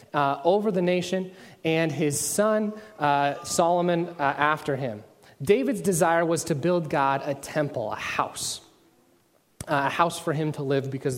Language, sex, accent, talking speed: English, male, American, 160 wpm